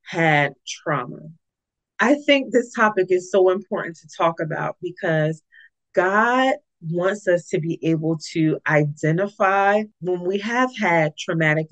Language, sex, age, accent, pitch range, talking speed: English, female, 30-49, American, 160-215 Hz, 135 wpm